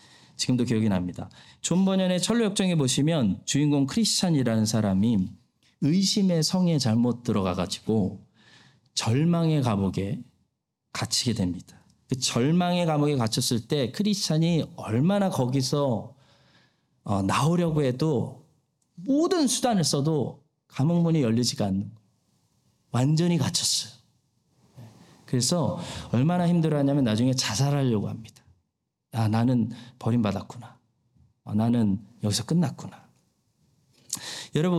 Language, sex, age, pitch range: Korean, male, 40-59, 115-170 Hz